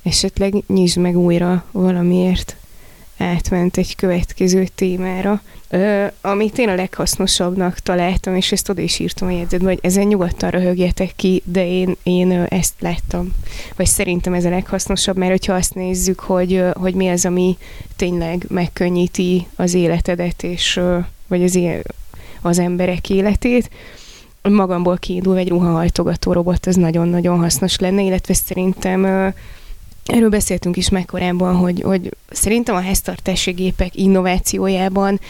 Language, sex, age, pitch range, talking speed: Hungarian, female, 20-39, 175-190 Hz, 130 wpm